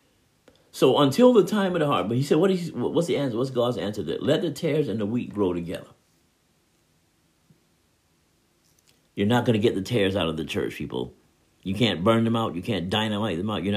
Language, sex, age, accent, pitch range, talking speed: English, male, 50-69, American, 90-120 Hz, 220 wpm